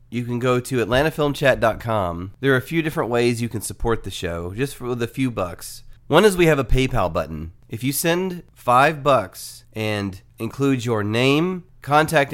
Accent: American